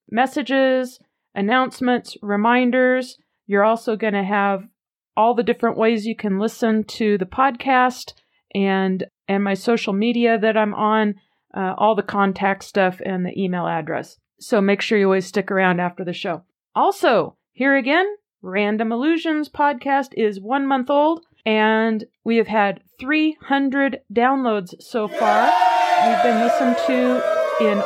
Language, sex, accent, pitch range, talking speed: English, female, American, 205-260 Hz, 145 wpm